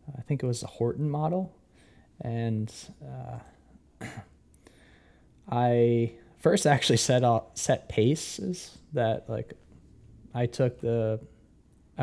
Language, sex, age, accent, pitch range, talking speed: English, male, 20-39, American, 105-125 Hz, 105 wpm